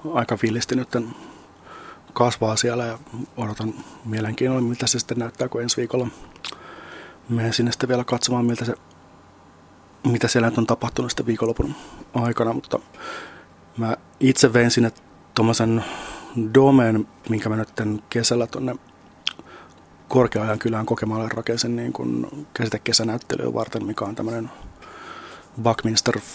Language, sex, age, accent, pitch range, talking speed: Finnish, male, 30-49, native, 110-120 Hz, 120 wpm